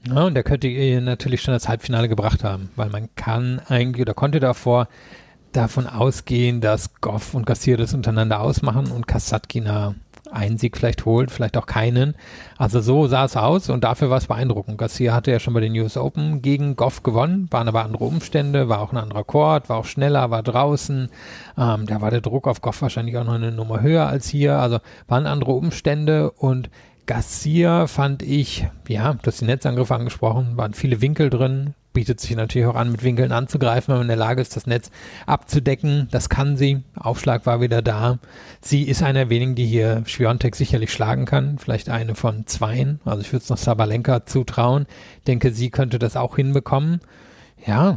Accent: German